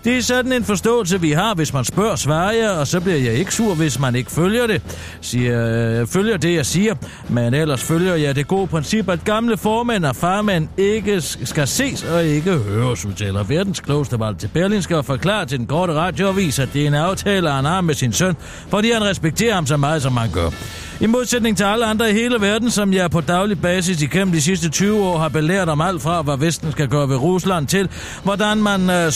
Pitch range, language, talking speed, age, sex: 130-195 Hz, Danish, 225 wpm, 60-79, male